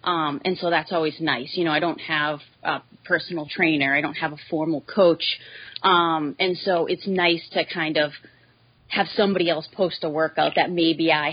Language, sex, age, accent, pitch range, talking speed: English, female, 30-49, American, 150-175 Hz, 195 wpm